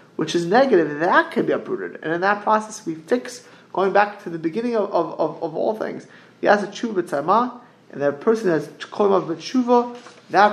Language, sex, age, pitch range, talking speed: English, male, 30-49, 150-210 Hz, 195 wpm